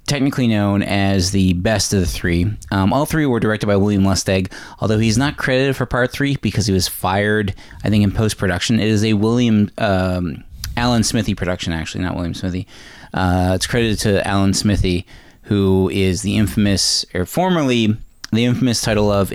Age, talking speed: 20-39, 185 wpm